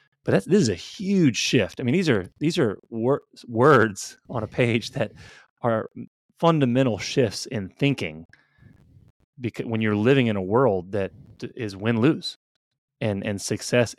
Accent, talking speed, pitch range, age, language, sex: American, 165 wpm, 100-125 Hz, 30-49, English, male